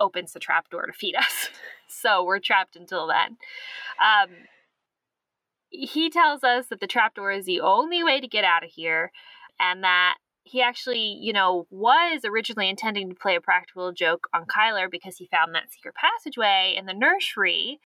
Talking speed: 180 wpm